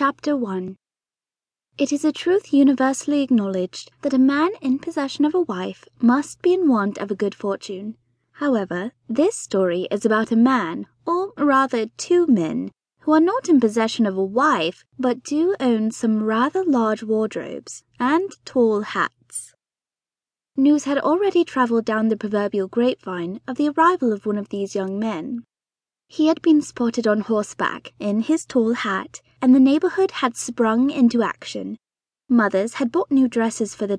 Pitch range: 210-295 Hz